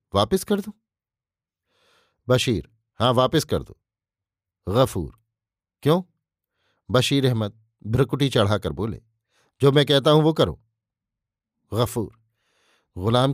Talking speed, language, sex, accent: 105 wpm, Hindi, male, native